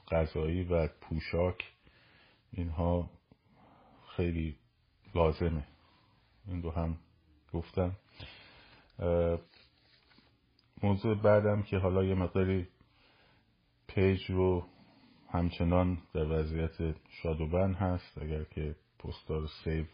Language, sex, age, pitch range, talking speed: Persian, male, 50-69, 80-100 Hz, 85 wpm